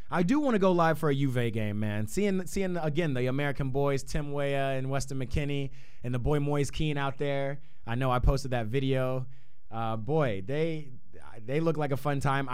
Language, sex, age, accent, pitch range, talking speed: English, male, 20-39, American, 100-135 Hz, 210 wpm